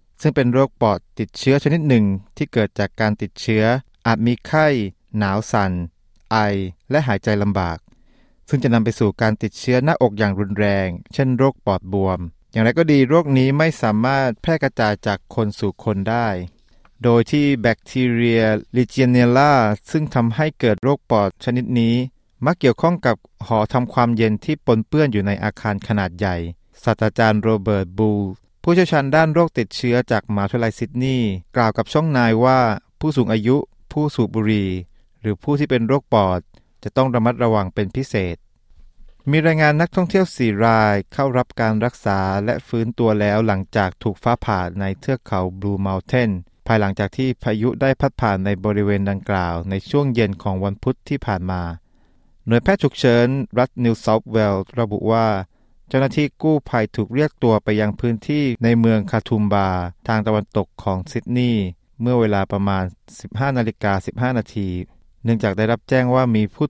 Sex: male